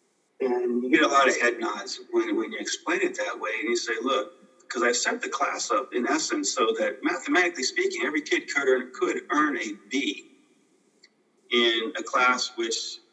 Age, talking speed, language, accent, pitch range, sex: 40-59, 195 wpm, English, American, 300-380 Hz, male